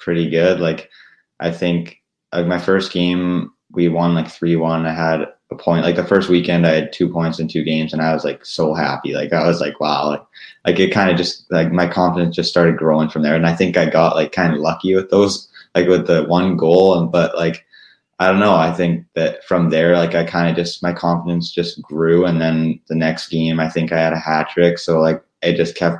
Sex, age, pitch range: male, 20-39, 80-85 Hz